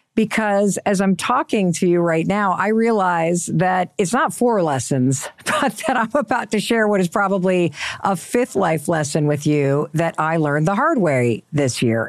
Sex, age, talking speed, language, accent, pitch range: female, 50-69, 190 wpm, English, American, 140-215 Hz